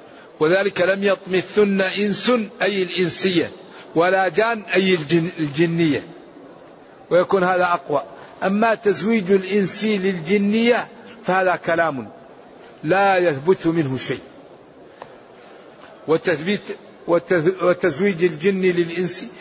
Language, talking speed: Arabic, 80 wpm